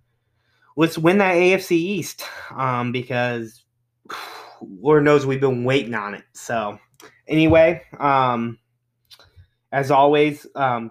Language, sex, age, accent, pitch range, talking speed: English, male, 20-39, American, 120-140 Hz, 110 wpm